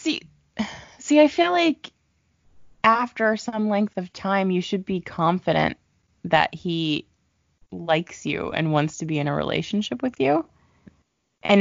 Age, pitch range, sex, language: 20-39, 145-195 Hz, female, English